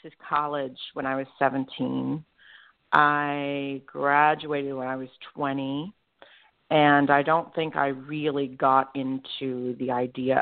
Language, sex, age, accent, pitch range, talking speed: English, female, 40-59, American, 135-165 Hz, 125 wpm